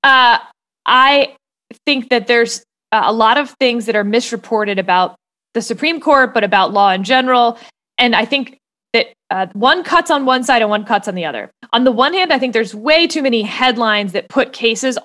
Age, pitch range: 20-39, 215-275 Hz